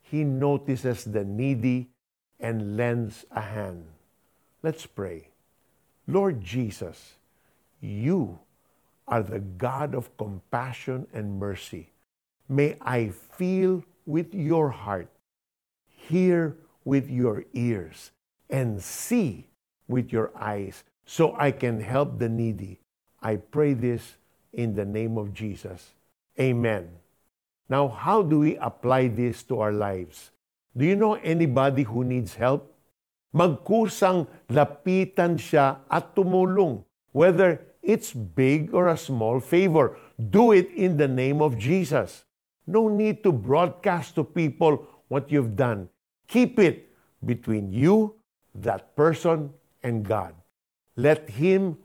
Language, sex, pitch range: Filipino, male, 110-165 Hz